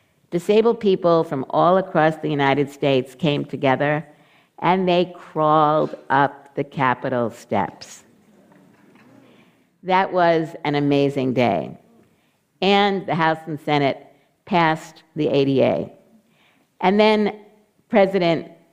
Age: 50-69